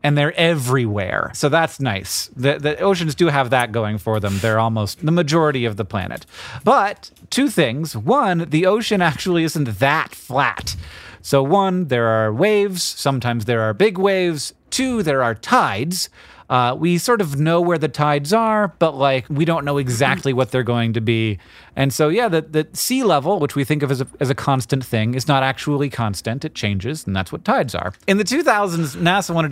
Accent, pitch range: American, 120-170 Hz